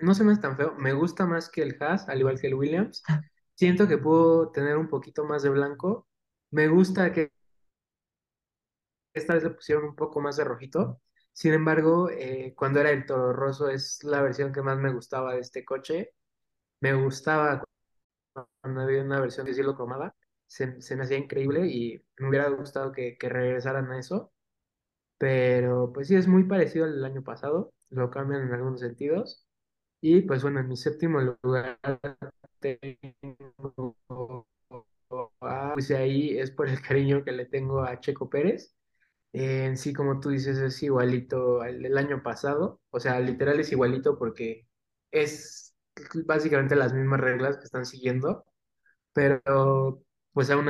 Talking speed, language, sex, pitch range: 170 wpm, Spanish, male, 130-145 Hz